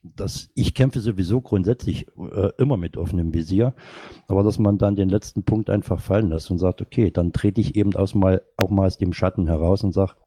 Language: German